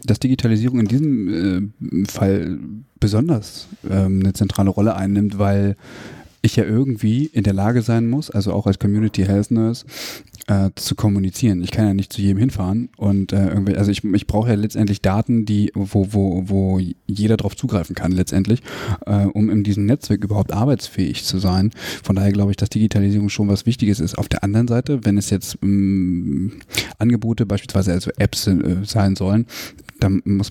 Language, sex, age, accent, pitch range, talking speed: German, male, 30-49, German, 100-115 Hz, 175 wpm